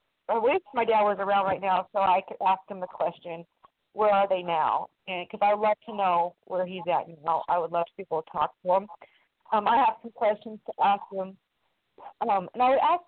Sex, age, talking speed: female, 40-59, 230 wpm